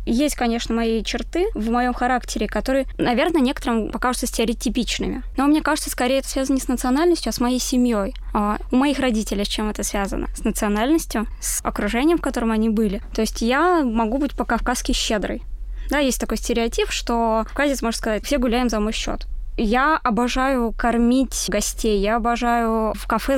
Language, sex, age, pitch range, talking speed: Russian, female, 20-39, 225-270 Hz, 180 wpm